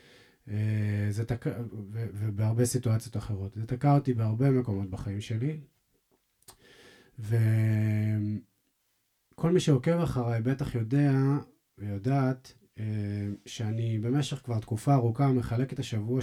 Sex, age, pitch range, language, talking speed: male, 30-49, 105-130 Hz, Hebrew, 95 wpm